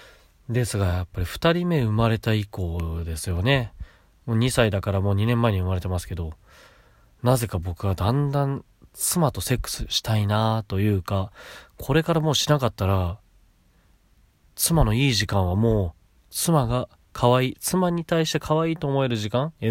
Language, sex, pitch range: Japanese, male, 90-130 Hz